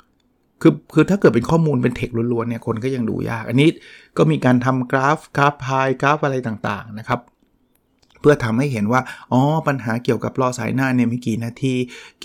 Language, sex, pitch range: Thai, male, 115-145 Hz